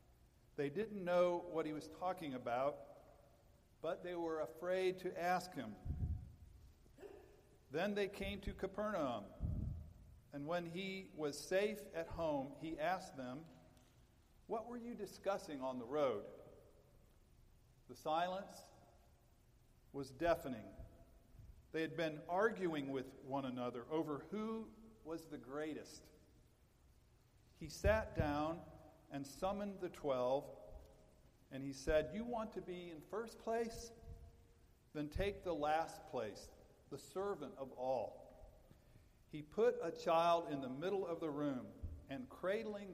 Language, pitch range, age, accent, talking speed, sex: English, 130-185 Hz, 50-69, American, 125 wpm, male